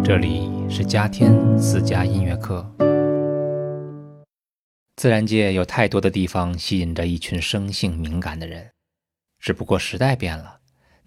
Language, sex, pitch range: Chinese, male, 85-105 Hz